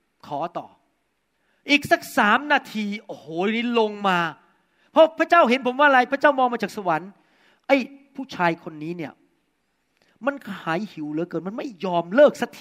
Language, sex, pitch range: Thai, male, 195-285 Hz